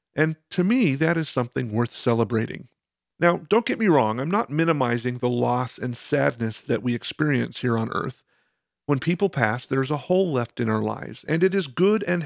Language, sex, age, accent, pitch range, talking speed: English, male, 50-69, American, 120-175 Hz, 200 wpm